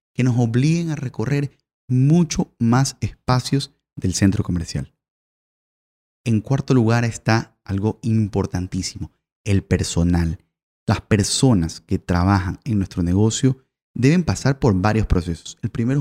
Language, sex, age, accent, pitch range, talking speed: Spanish, male, 30-49, Venezuelan, 95-135 Hz, 125 wpm